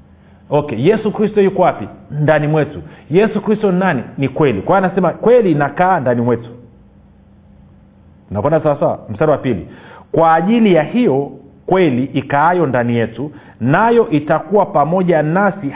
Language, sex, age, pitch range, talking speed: Swahili, male, 40-59, 130-180 Hz, 135 wpm